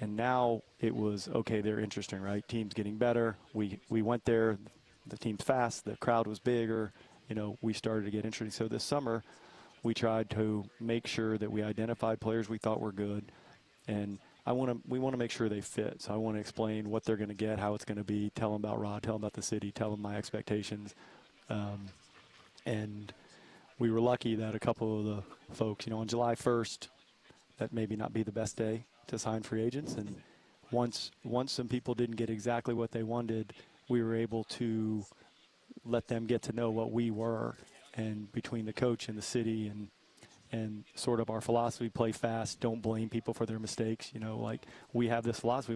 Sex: male